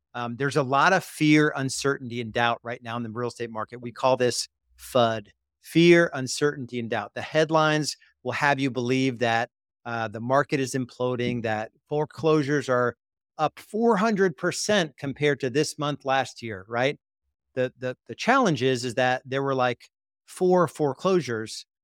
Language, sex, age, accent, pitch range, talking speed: English, male, 40-59, American, 120-150 Hz, 165 wpm